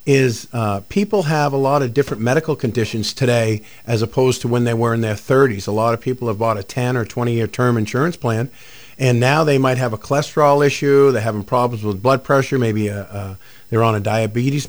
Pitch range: 115-140 Hz